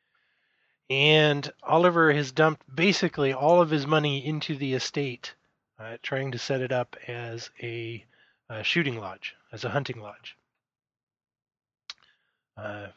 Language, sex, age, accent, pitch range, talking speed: English, male, 20-39, American, 120-150 Hz, 130 wpm